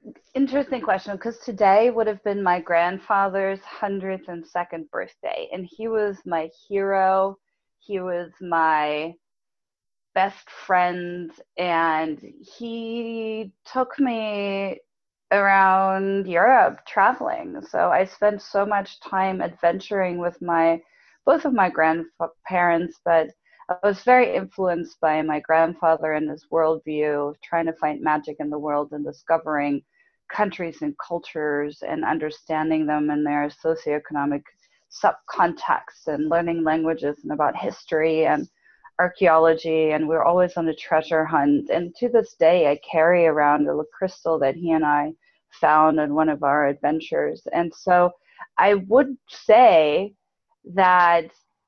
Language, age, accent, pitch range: English, 20-39, American, 155-195 Hz